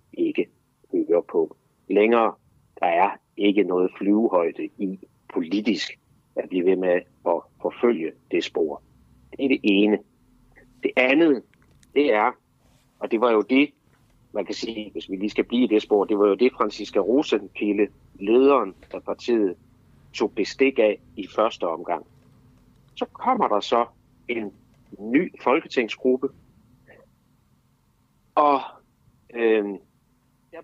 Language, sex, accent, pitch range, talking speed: Danish, male, native, 105-135 Hz, 130 wpm